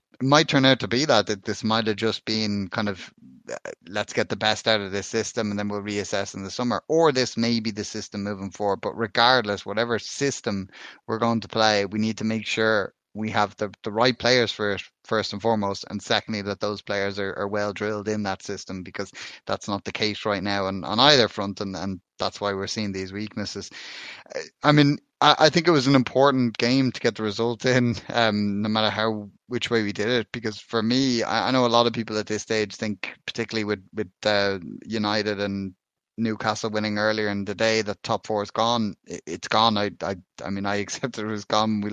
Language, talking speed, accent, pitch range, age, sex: English, 230 wpm, Irish, 105-115 Hz, 20-39, male